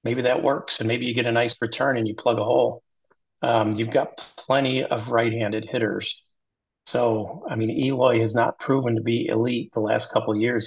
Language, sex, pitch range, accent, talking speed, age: English, male, 110-120 Hz, American, 210 wpm, 40-59